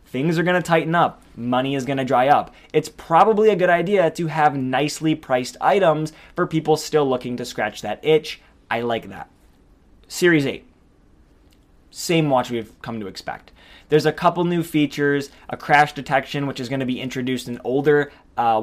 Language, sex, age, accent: English, male, 20-39, American